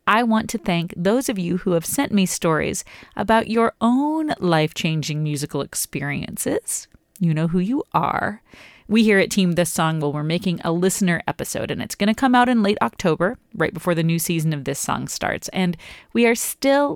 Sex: female